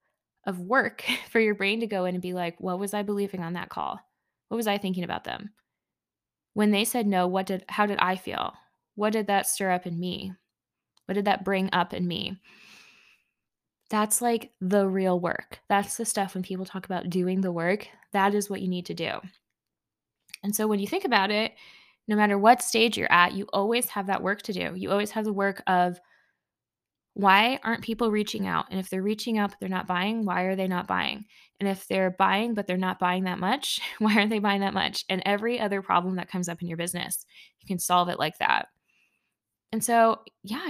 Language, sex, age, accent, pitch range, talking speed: English, female, 10-29, American, 185-215 Hz, 220 wpm